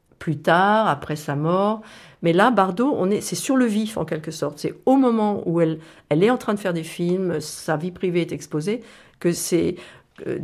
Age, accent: 50-69, French